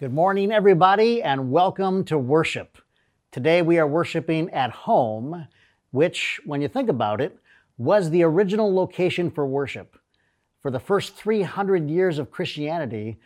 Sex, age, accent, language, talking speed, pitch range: male, 50-69, American, English, 145 wpm, 130-180 Hz